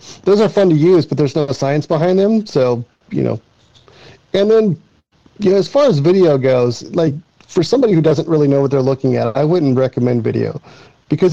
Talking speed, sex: 200 wpm, male